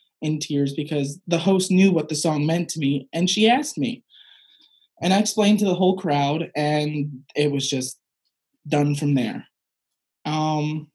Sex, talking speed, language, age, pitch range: male, 170 wpm, English, 20-39, 155-200 Hz